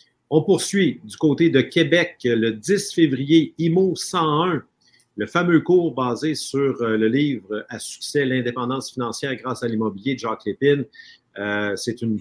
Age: 50-69